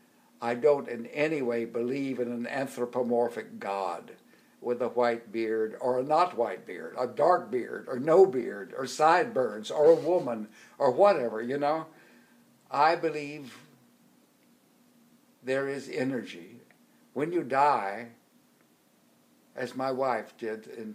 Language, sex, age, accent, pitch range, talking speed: English, male, 60-79, American, 120-195 Hz, 135 wpm